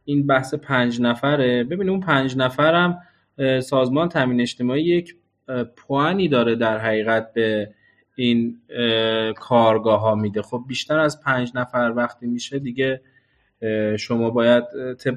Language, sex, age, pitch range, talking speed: Persian, male, 20-39, 115-140 Hz, 125 wpm